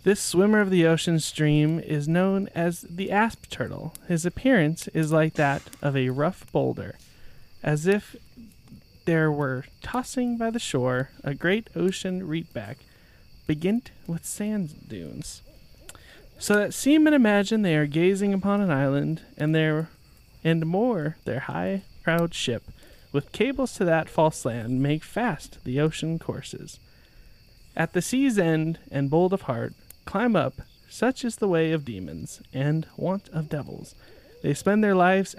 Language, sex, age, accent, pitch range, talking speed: English, male, 30-49, American, 140-190 Hz, 155 wpm